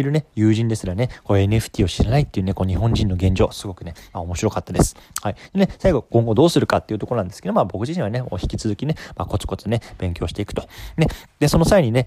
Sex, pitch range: male, 95-130 Hz